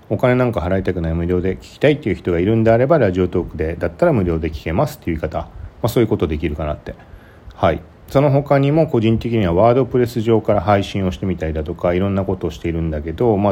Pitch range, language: 85-115 Hz, Japanese